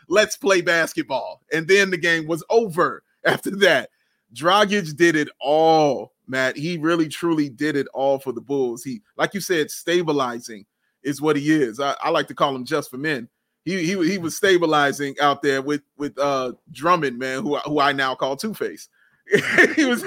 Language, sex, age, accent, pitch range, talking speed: English, male, 30-49, American, 150-210 Hz, 190 wpm